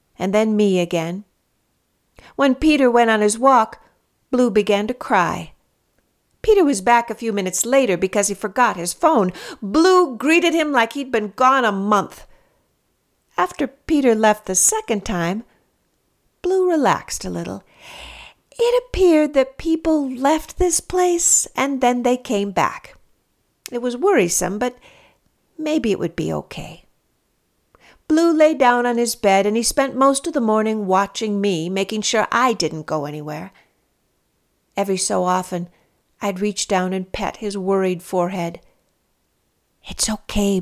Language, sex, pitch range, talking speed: English, female, 195-280 Hz, 150 wpm